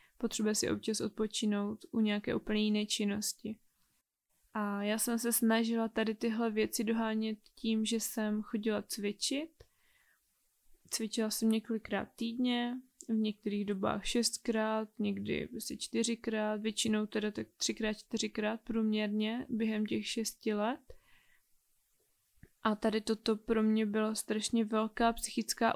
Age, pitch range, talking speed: 20-39, 215-230 Hz, 120 wpm